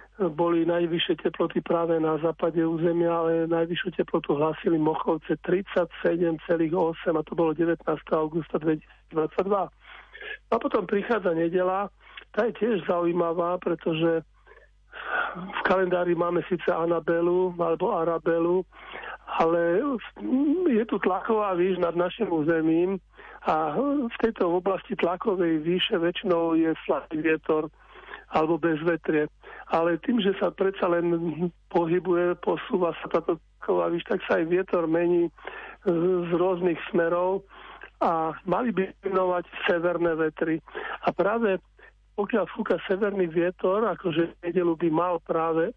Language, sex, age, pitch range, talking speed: Slovak, male, 40-59, 165-185 Hz, 120 wpm